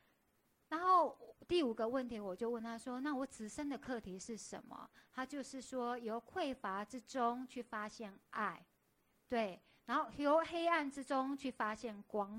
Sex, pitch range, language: female, 205-255 Hz, Chinese